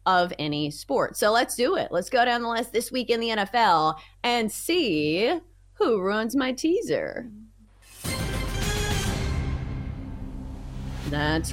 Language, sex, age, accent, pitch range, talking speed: English, female, 30-49, American, 160-255 Hz, 125 wpm